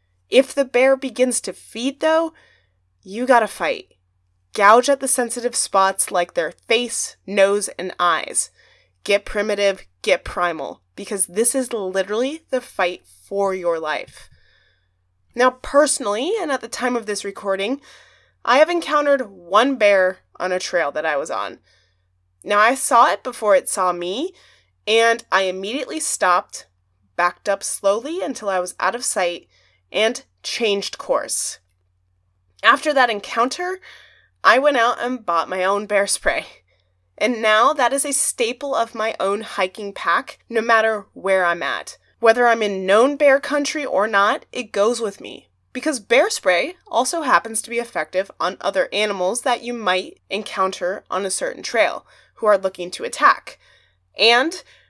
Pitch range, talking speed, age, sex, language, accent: 180-255 Hz, 155 wpm, 20-39, female, English, American